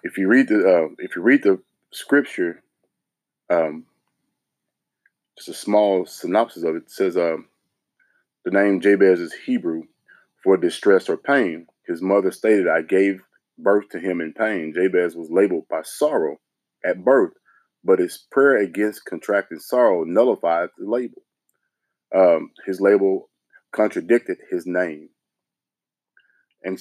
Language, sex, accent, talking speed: English, male, American, 130 wpm